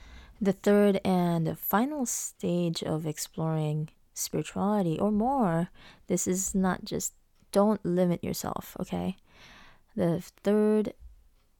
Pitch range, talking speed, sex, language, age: 160-205 Hz, 105 wpm, female, English, 20-39